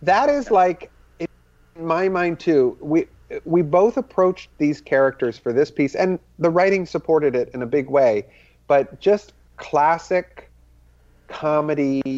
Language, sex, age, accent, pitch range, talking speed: English, male, 40-59, American, 115-150 Hz, 145 wpm